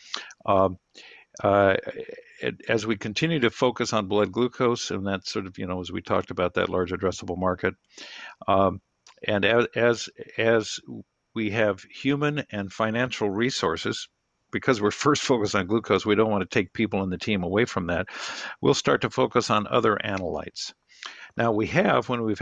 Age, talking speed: 60-79, 175 wpm